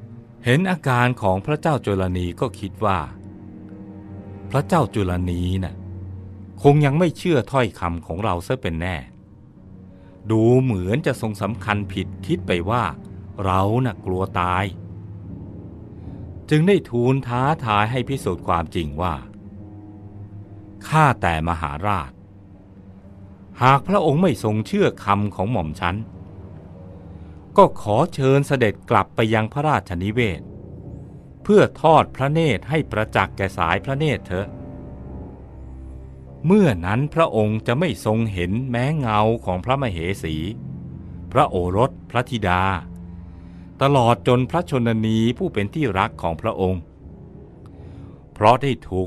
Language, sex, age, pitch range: Thai, male, 60-79, 90-125 Hz